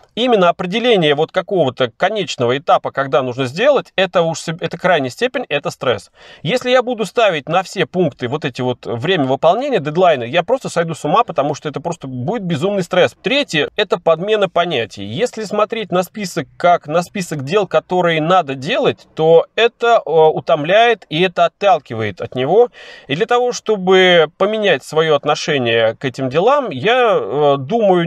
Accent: native